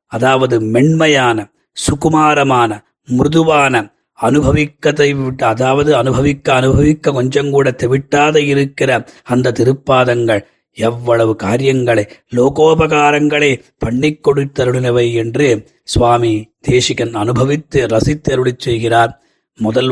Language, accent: Tamil, native